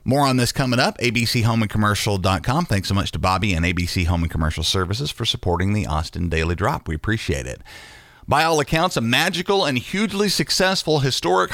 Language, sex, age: English, male, 40-59